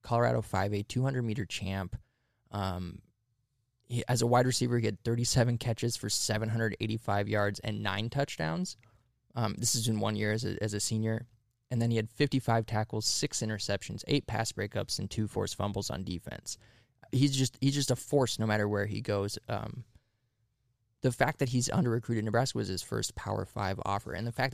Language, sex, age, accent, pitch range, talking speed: English, male, 20-39, American, 105-120 Hz, 185 wpm